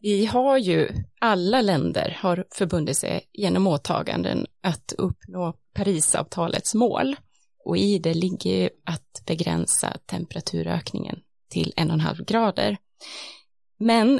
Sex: female